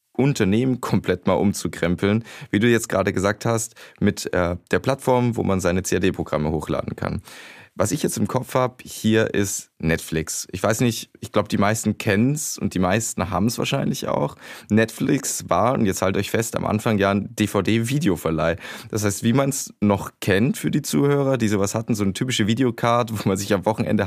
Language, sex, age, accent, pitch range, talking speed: German, male, 20-39, German, 100-125 Hz, 195 wpm